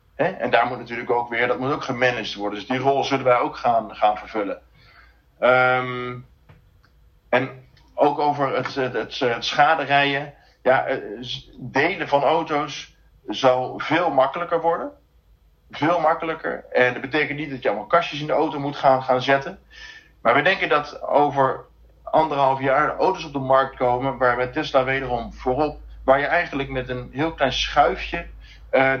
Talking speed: 170 wpm